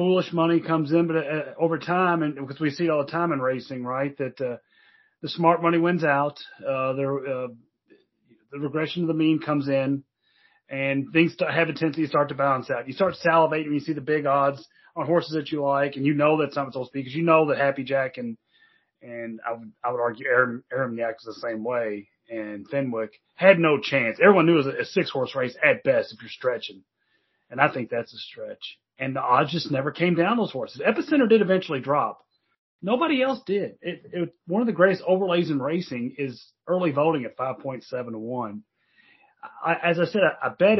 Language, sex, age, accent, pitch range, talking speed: English, male, 30-49, American, 135-175 Hz, 220 wpm